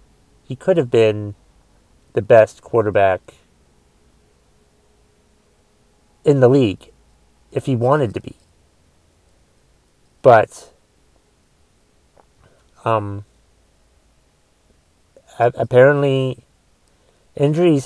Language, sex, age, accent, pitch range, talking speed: English, male, 30-49, American, 110-150 Hz, 65 wpm